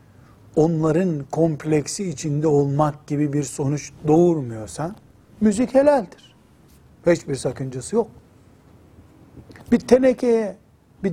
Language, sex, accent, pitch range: Turkish, male, native, 130-160 Hz